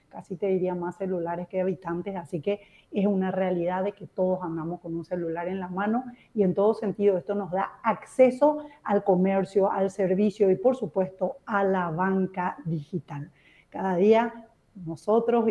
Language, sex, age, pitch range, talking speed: Spanish, female, 40-59, 180-210 Hz, 170 wpm